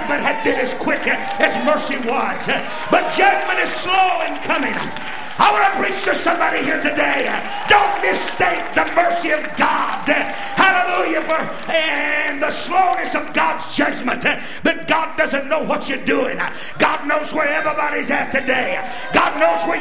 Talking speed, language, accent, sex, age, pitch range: 160 wpm, English, American, male, 40-59, 260-325 Hz